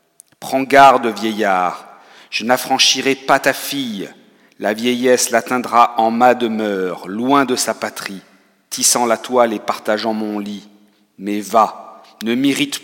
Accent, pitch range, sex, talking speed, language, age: French, 105-125 Hz, male, 135 wpm, French, 50-69